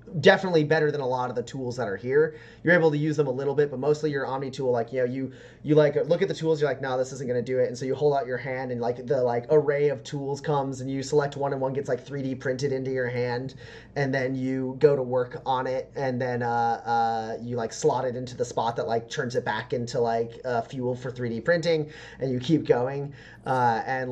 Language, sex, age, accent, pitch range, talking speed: English, male, 30-49, American, 130-200 Hz, 265 wpm